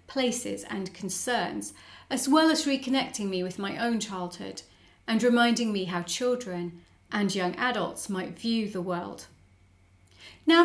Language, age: English, 40-59